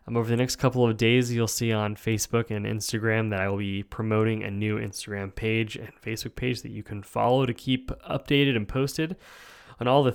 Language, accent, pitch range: English, American, 105-125 Hz